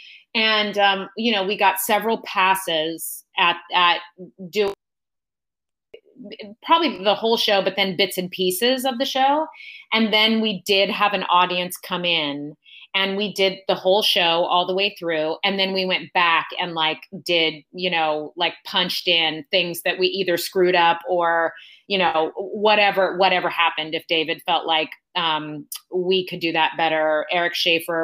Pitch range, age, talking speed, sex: 165-200 Hz, 30-49, 170 wpm, female